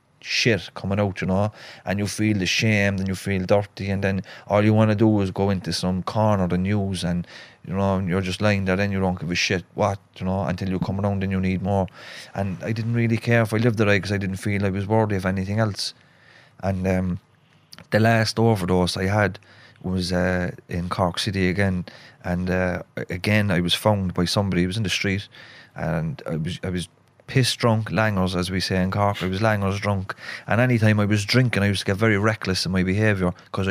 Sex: male